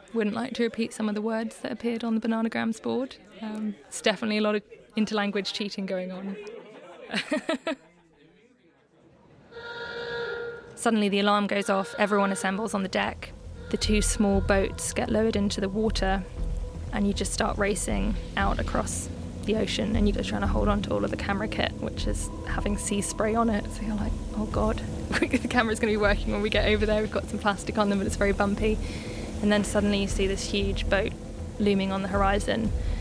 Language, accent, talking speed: English, British, 200 wpm